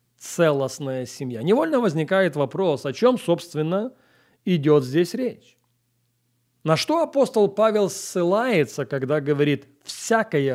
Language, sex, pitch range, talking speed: English, male, 135-200 Hz, 110 wpm